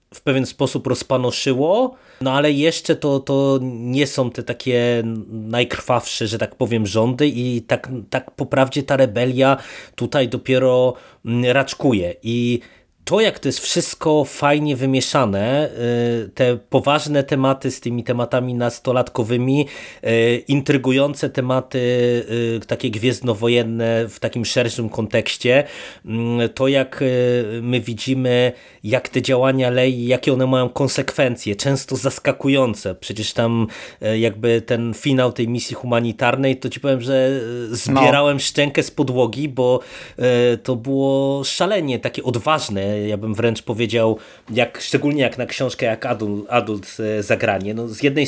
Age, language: 30-49, Polish